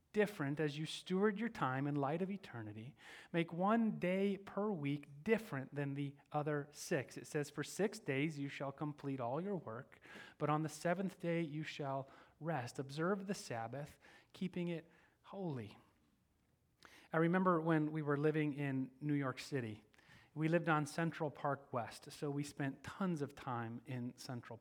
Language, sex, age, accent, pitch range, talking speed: English, male, 30-49, American, 130-170 Hz, 170 wpm